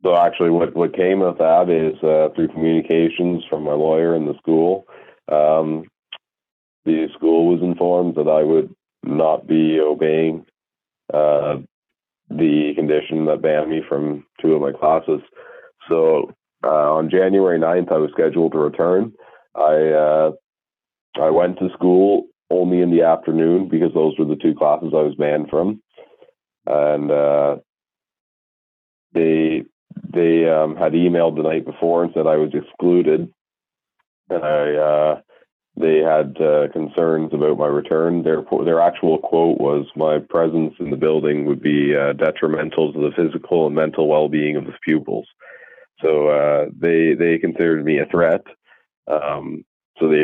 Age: 30-49